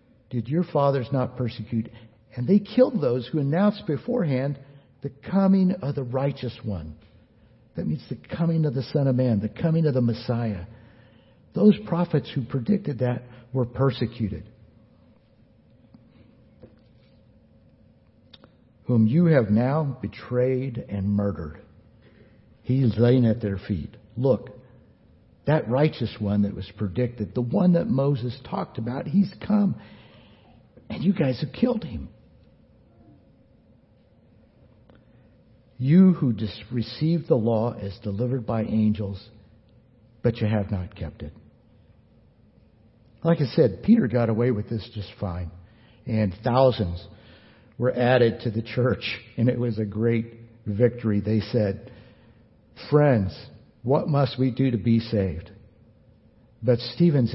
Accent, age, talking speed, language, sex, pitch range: American, 60-79, 130 wpm, English, male, 110-130 Hz